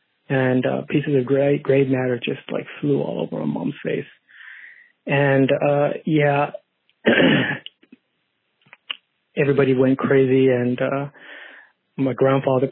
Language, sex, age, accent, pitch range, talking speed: English, male, 30-49, American, 135-145 Hz, 120 wpm